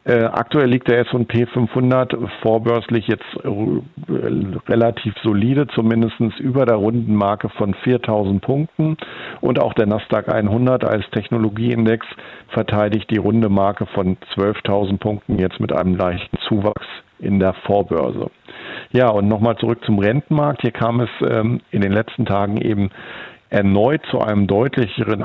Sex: male